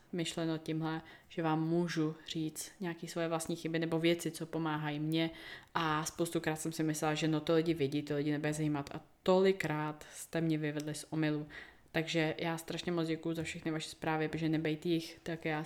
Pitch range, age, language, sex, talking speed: 160-195 Hz, 20-39, Czech, female, 195 wpm